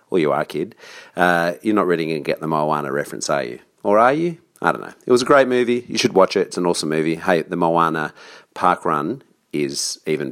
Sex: male